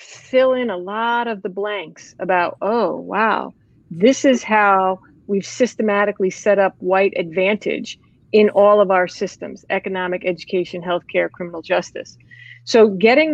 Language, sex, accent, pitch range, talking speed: English, female, American, 190-230 Hz, 140 wpm